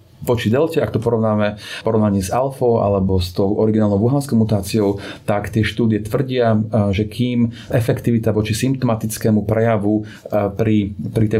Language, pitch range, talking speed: Slovak, 105-120 Hz, 135 wpm